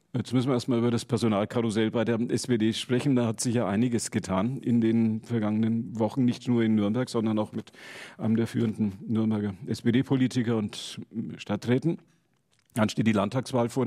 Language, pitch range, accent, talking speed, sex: German, 105-120 Hz, German, 175 wpm, male